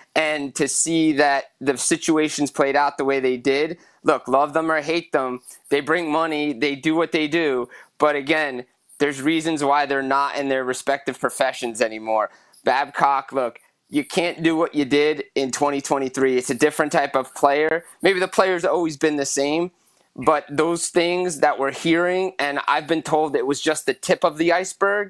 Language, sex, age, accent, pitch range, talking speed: English, male, 20-39, American, 130-160 Hz, 190 wpm